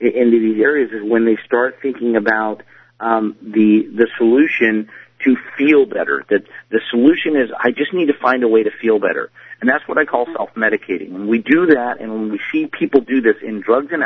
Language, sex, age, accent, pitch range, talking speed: English, male, 40-59, American, 115-160 Hz, 215 wpm